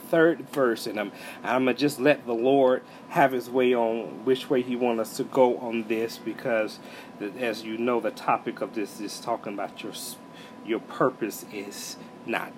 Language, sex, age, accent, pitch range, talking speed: English, male, 40-59, American, 130-205 Hz, 185 wpm